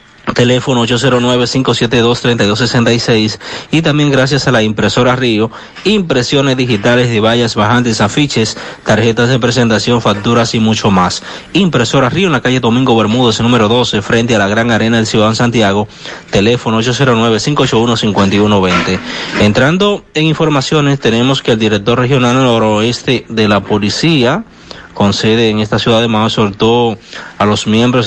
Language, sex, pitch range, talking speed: Spanish, male, 110-125 Hz, 135 wpm